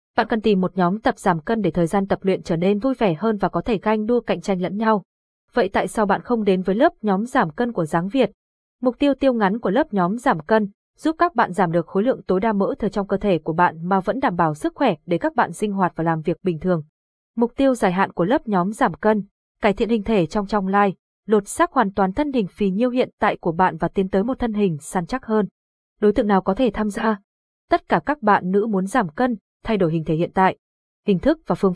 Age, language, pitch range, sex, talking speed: 20-39, Vietnamese, 185-240 Hz, female, 270 wpm